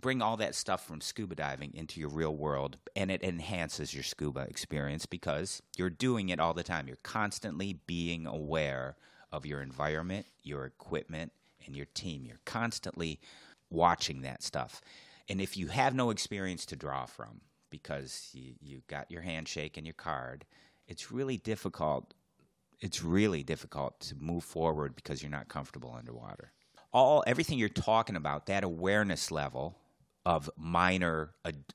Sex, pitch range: male, 75-95 Hz